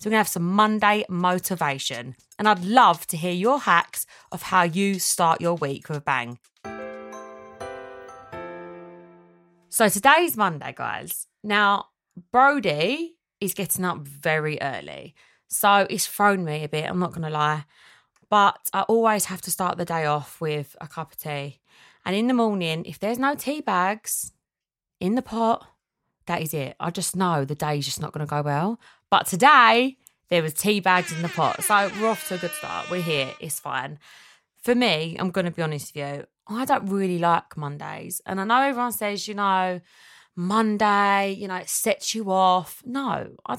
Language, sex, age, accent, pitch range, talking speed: English, female, 20-39, British, 155-210 Hz, 190 wpm